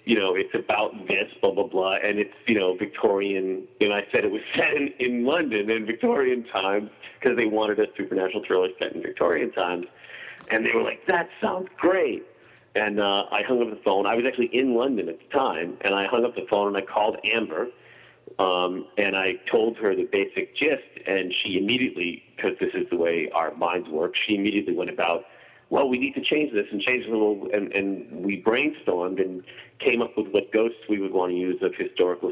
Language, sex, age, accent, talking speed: English, male, 50-69, American, 215 wpm